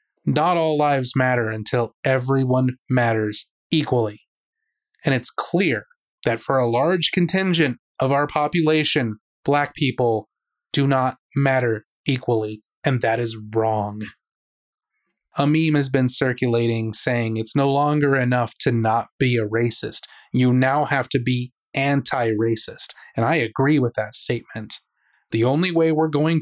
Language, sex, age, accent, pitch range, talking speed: English, male, 30-49, American, 120-150 Hz, 140 wpm